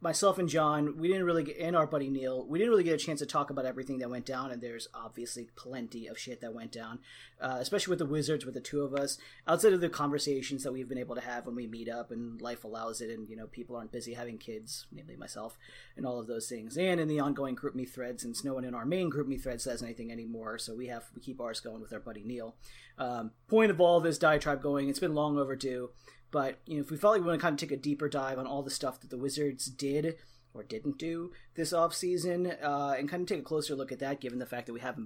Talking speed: 280 wpm